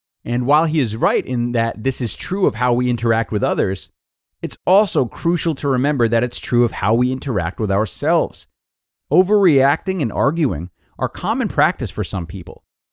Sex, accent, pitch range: male, American, 100-135 Hz